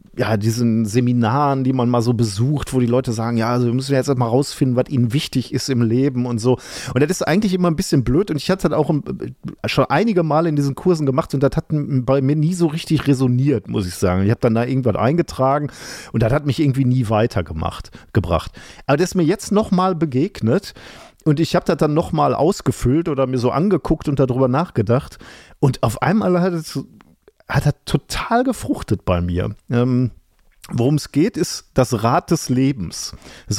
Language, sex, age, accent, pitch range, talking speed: German, male, 40-59, German, 105-145 Hz, 205 wpm